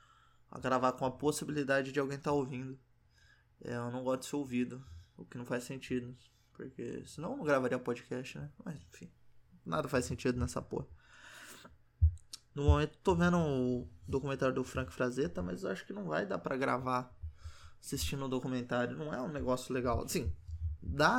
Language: Portuguese